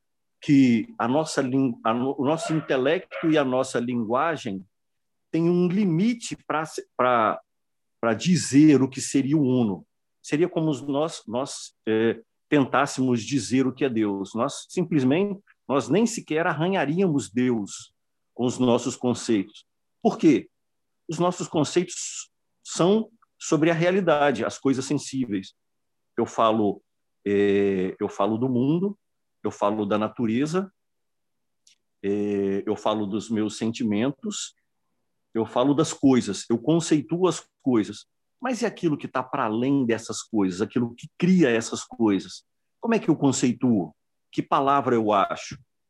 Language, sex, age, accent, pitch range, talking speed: Portuguese, male, 50-69, Brazilian, 115-160 Hz, 135 wpm